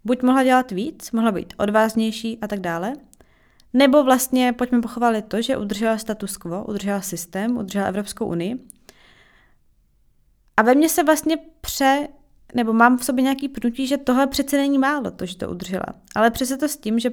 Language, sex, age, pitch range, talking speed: Czech, female, 20-39, 215-260 Hz, 180 wpm